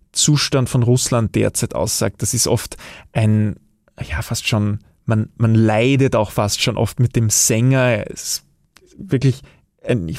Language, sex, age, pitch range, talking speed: German, male, 20-39, 110-125 Hz, 155 wpm